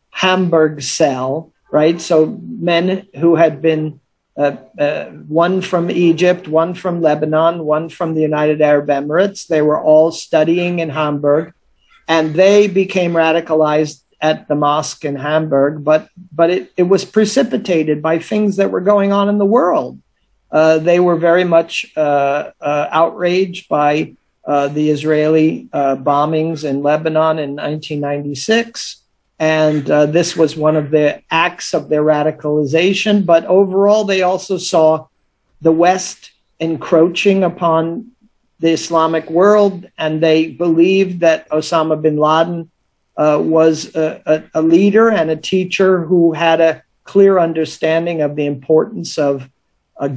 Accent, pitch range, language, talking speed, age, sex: American, 150-175 Hz, English, 140 wpm, 50-69, male